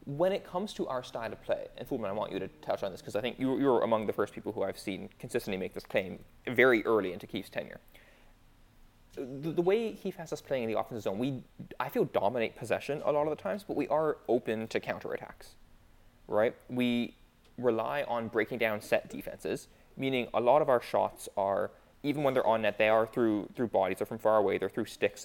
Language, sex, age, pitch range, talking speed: English, male, 20-39, 105-145 Hz, 230 wpm